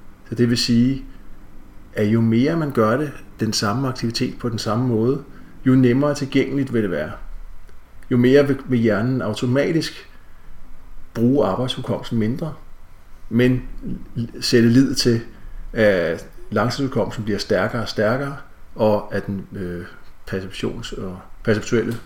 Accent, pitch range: native, 95-130 Hz